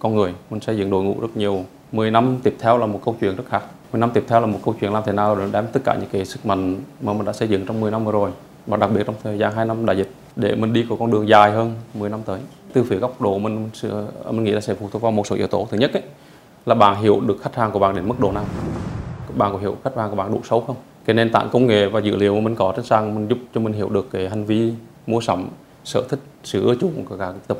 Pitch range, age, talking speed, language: 100-115 Hz, 20-39, 310 wpm, Vietnamese